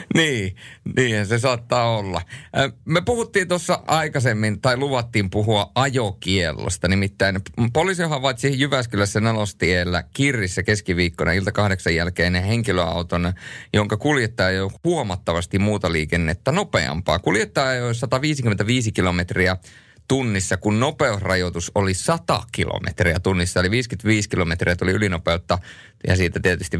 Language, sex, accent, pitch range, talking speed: Finnish, male, native, 90-125 Hz, 115 wpm